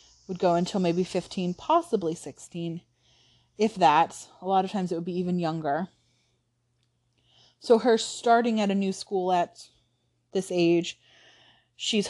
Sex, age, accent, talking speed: female, 20-39, American, 145 wpm